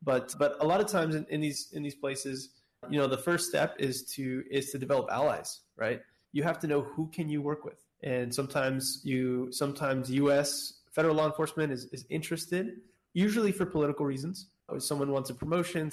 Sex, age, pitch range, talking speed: male, 20-39, 130-150 Hz, 195 wpm